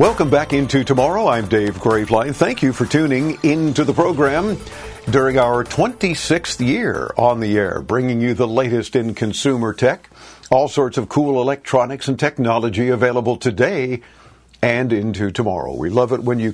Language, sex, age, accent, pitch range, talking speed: English, male, 50-69, American, 115-140 Hz, 165 wpm